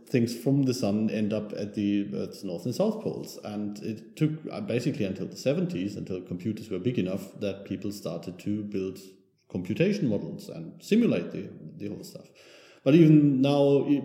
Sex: male